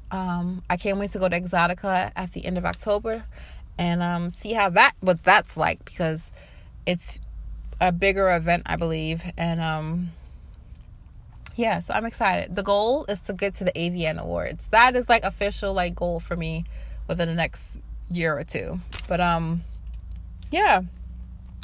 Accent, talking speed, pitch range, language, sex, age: American, 165 wpm, 165-200 Hz, English, female, 20-39